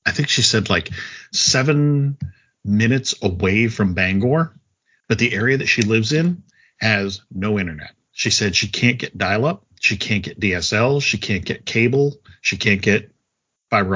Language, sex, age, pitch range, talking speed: English, male, 50-69, 100-130 Hz, 165 wpm